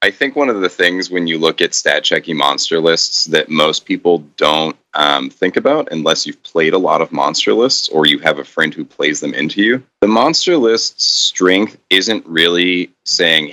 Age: 30-49